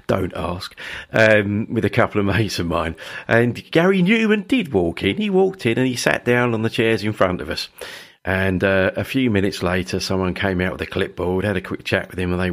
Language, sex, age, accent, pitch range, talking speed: English, male, 40-59, British, 90-120 Hz, 240 wpm